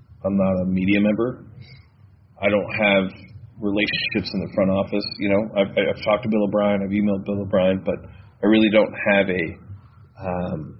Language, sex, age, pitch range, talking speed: English, male, 30-49, 95-110 Hz, 180 wpm